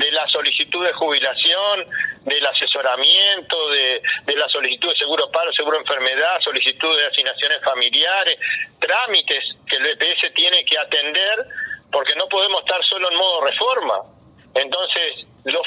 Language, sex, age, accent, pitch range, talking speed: Spanish, male, 40-59, Argentinian, 155-250 Hz, 140 wpm